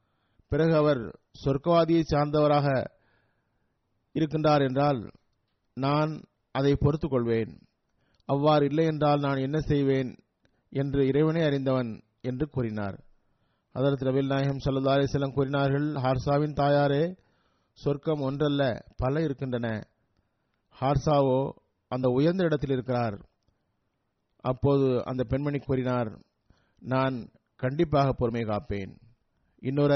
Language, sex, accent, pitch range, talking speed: Tamil, male, native, 120-150 Hz, 90 wpm